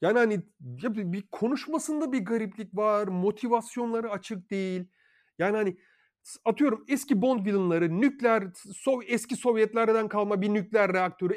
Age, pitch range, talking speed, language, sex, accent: 40-59, 155-215 Hz, 125 wpm, Turkish, male, native